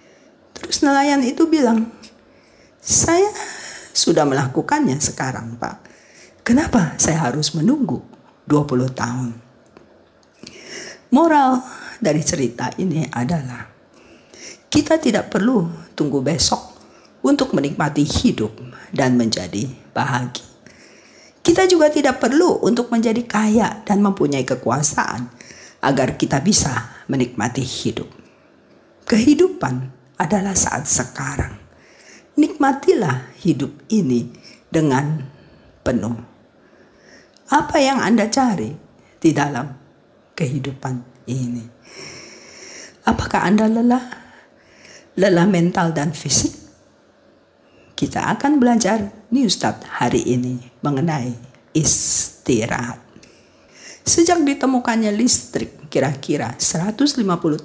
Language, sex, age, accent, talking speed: Indonesian, female, 40-59, native, 85 wpm